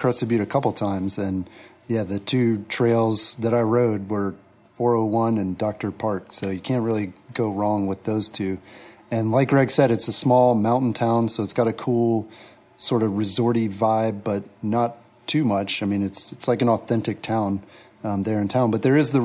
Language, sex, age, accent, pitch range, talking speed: English, male, 30-49, American, 100-120 Hz, 205 wpm